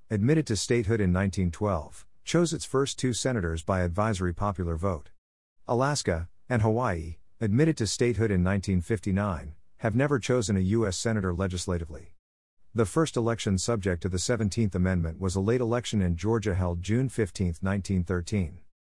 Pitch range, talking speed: 90-115 Hz, 150 wpm